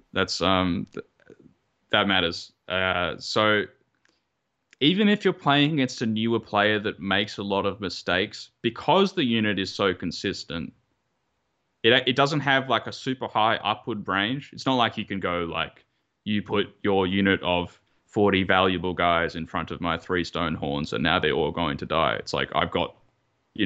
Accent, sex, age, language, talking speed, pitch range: Australian, male, 10-29, English, 180 wpm, 95-120 Hz